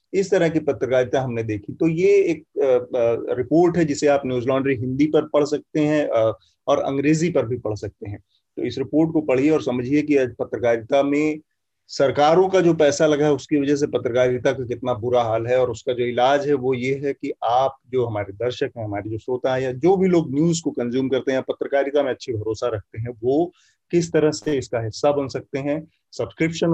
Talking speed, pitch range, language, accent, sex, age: 220 wpm, 125-150 Hz, Hindi, native, male, 30-49